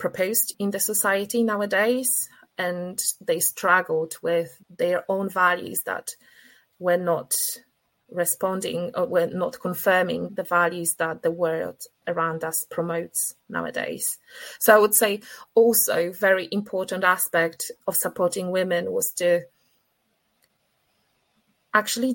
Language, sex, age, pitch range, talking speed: English, female, 20-39, 175-220 Hz, 115 wpm